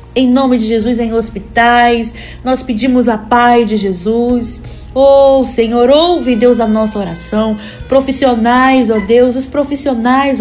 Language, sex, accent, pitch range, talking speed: Portuguese, female, Brazilian, 230-275 Hz, 140 wpm